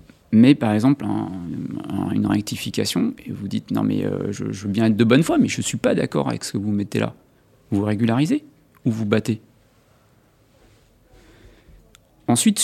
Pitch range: 110-140 Hz